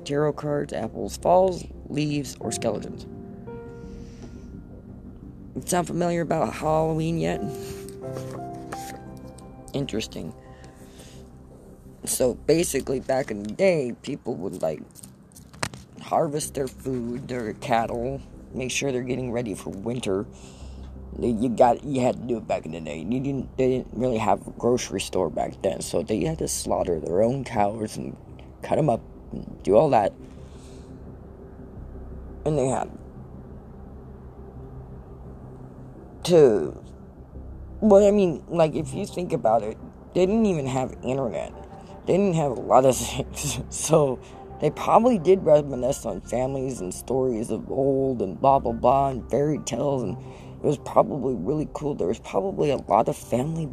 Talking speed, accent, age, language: 145 wpm, American, 20-39, English